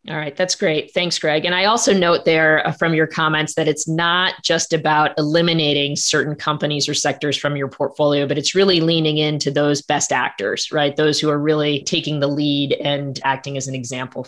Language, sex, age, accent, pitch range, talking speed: English, female, 20-39, American, 150-175 Hz, 200 wpm